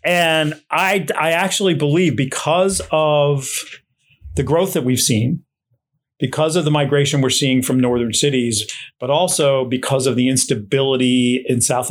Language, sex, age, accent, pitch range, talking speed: English, male, 40-59, American, 130-160 Hz, 145 wpm